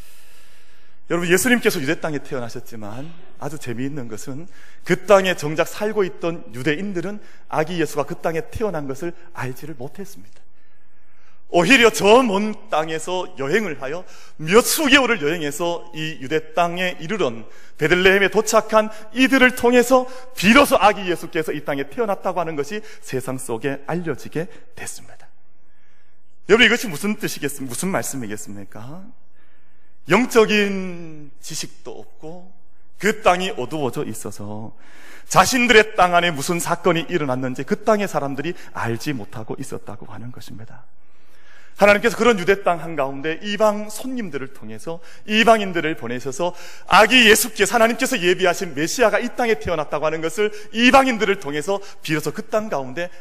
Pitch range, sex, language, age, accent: 135-205 Hz, male, Korean, 30-49, native